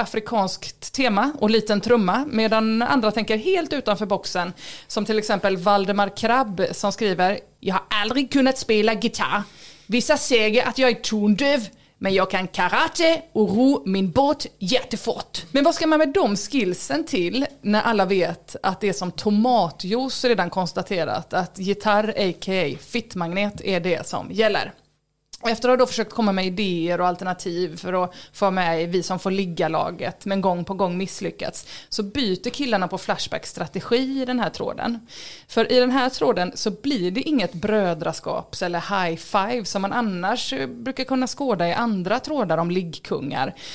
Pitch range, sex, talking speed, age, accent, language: 185-245 Hz, female, 170 wpm, 30-49, Swedish, English